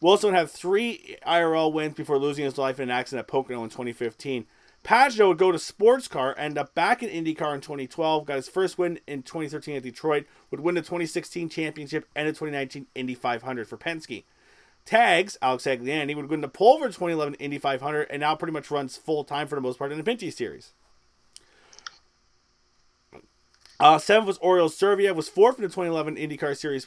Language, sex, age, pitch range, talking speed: English, male, 30-49, 135-175 Hz, 190 wpm